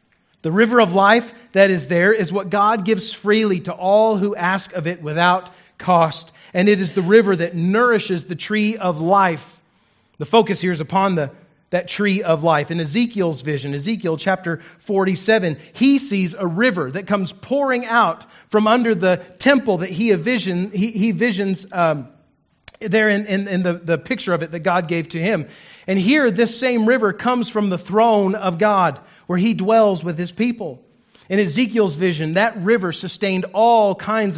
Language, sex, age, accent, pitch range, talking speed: English, male, 40-59, American, 175-225 Hz, 190 wpm